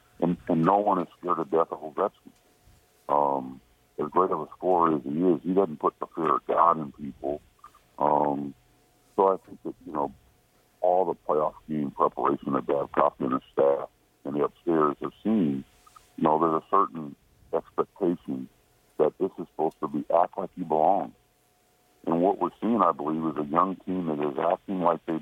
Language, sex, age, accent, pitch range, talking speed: English, female, 60-79, American, 70-80 Hz, 195 wpm